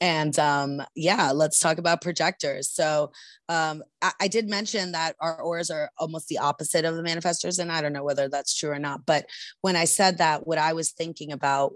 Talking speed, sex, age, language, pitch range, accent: 215 wpm, female, 30-49, English, 140-165 Hz, American